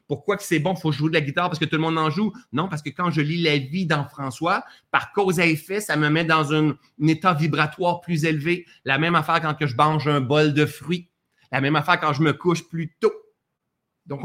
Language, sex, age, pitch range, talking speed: French, male, 30-49, 145-185 Hz, 260 wpm